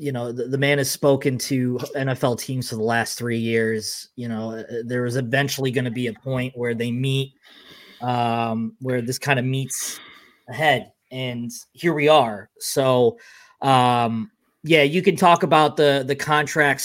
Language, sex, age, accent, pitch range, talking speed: English, male, 20-39, American, 125-160 Hz, 175 wpm